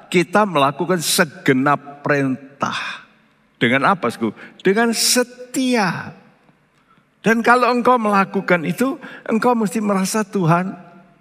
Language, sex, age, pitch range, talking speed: Indonesian, male, 50-69, 145-210 Hz, 95 wpm